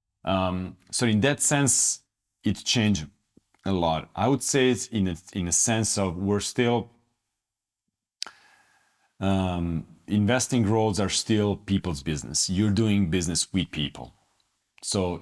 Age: 40-59